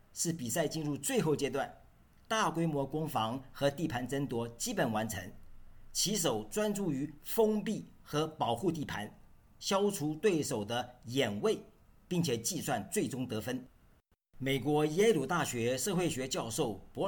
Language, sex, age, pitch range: Chinese, male, 50-69, 125-175 Hz